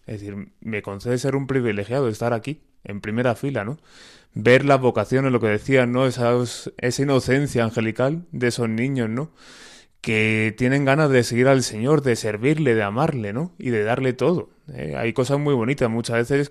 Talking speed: 190 wpm